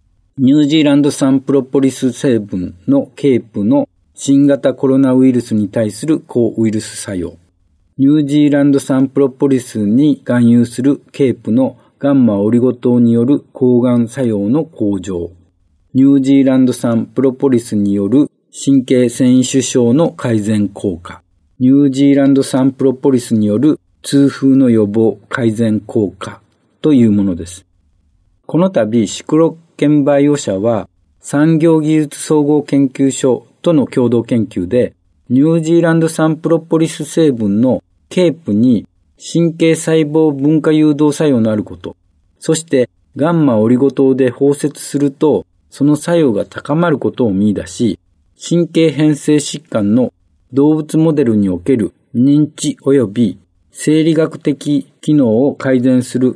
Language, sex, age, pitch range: Japanese, male, 50-69, 110-150 Hz